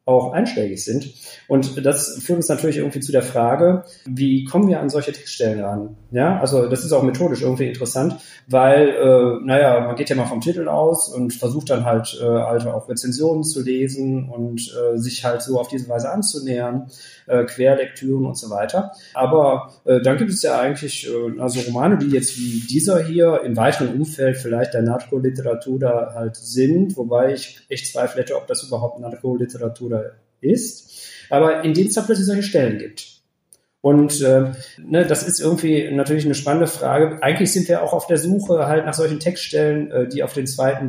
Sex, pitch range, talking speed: male, 125-150 Hz, 190 wpm